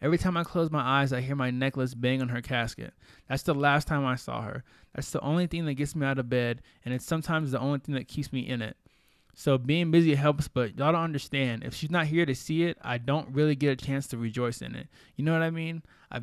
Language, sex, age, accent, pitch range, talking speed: English, male, 20-39, American, 125-150 Hz, 270 wpm